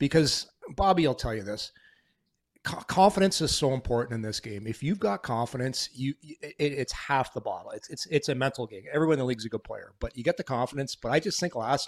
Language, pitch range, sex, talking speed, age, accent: English, 125-165 Hz, male, 230 wpm, 40-59, American